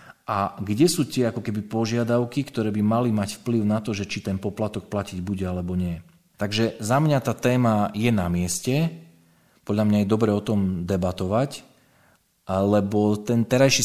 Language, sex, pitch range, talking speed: Slovak, male, 95-125 Hz, 175 wpm